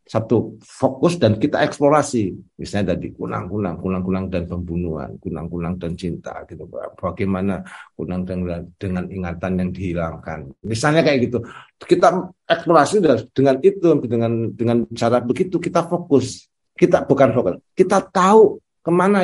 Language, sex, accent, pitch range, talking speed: Indonesian, male, native, 95-125 Hz, 130 wpm